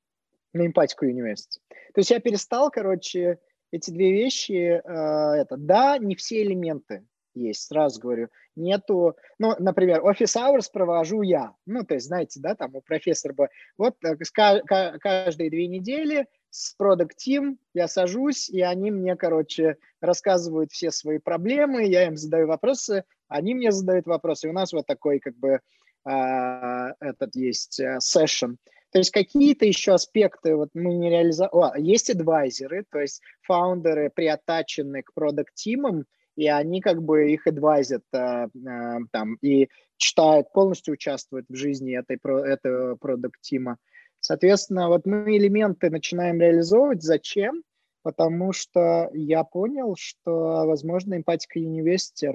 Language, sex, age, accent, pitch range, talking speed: Russian, male, 20-39, native, 145-195 Hz, 140 wpm